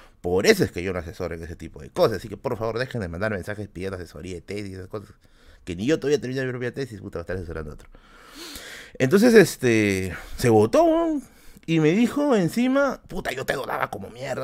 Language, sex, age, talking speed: Spanish, male, 30-49, 235 wpm